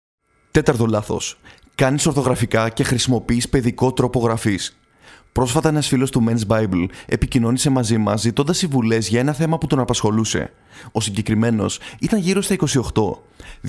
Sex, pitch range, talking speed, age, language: male, 115-145 Hz, 140 wpm, 30-49, Greek